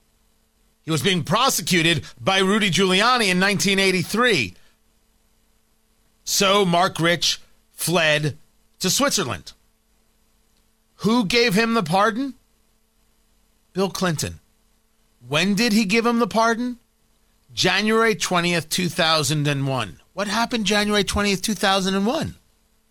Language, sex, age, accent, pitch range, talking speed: English, male, 40-59, American, 120-200 Hz, 95 wpm